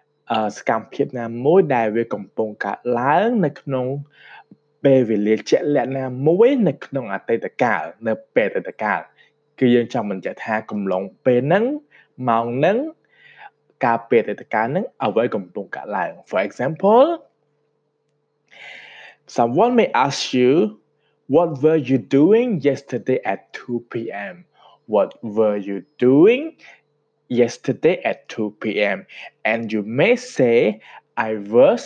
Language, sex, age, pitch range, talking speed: English, male, 20-39, 110-150 Hz, 40 wpm